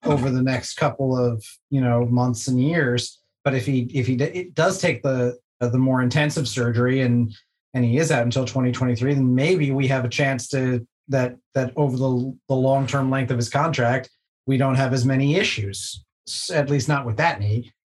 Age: 30-49